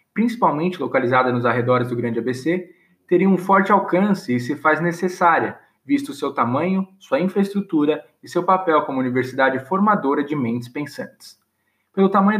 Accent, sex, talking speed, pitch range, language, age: Brazilian, male, 155 wpm, 130-190 Hz, English, 20-39